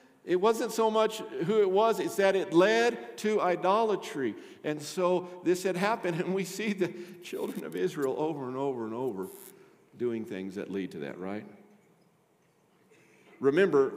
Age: 50-69